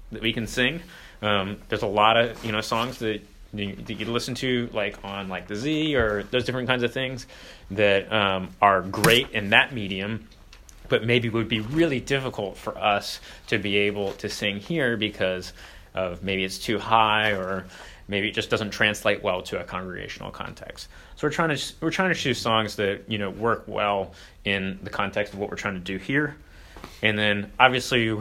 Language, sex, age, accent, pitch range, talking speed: English, male, 30-49, American, 95-115 Hz, 200 wpm